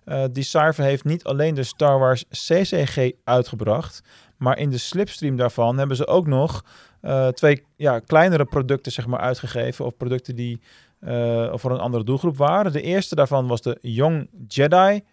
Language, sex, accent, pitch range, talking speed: Dutch, male, Dutch, 120-155 Hz, 170 wpm